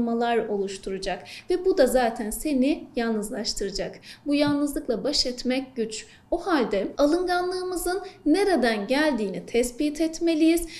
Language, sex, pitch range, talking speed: Turkish, female, 235-320 Hz, 105 wpm